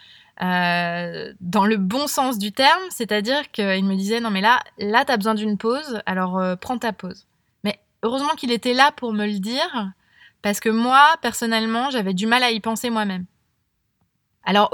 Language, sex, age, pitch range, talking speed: French, female, 20-39, 210-270 Hz, 190 wpm